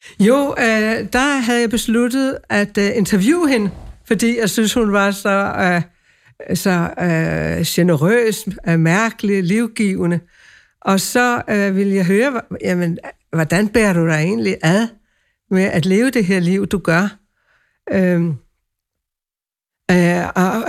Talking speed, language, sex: 115 wpm, Danish, female